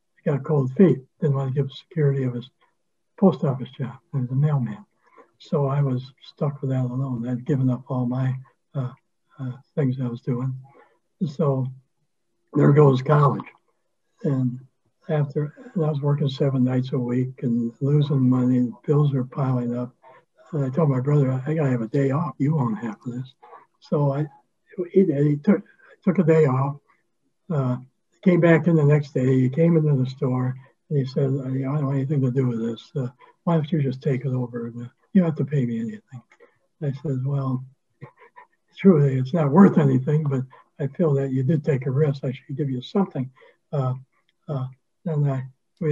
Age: 60-79